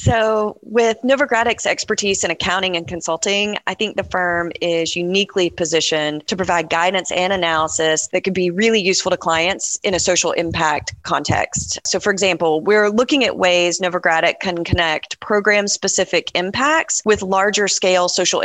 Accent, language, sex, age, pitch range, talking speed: American, English, female, 30-49, 170-195 Hz, 155 wpm